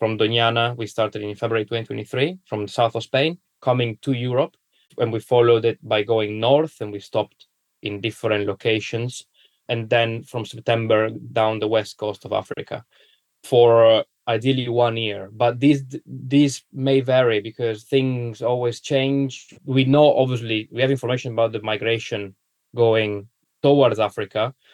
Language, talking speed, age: English, 155 wpm, 20-39